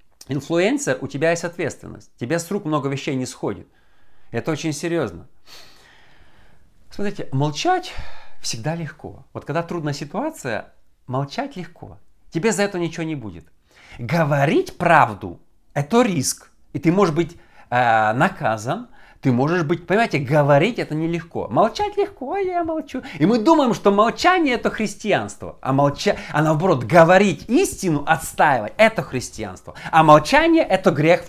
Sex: male